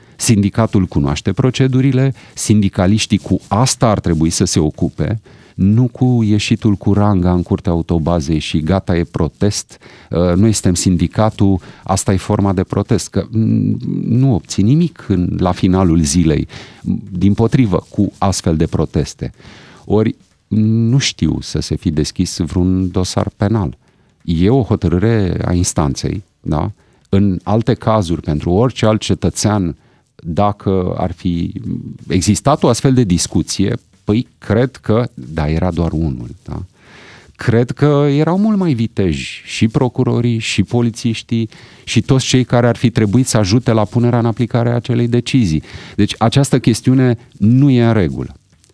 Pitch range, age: 95-120 Hz, 40-59